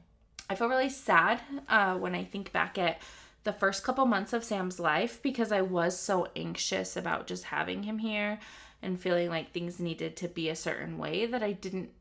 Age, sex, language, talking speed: 20-39, female, English, 200 wpm